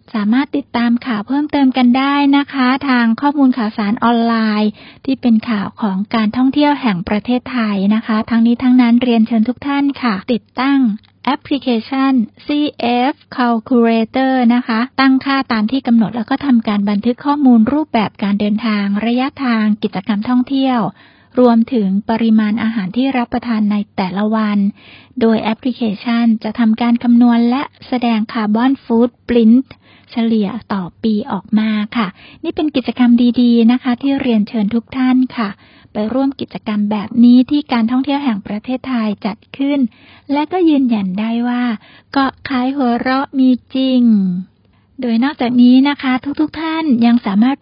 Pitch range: 220-260 Hz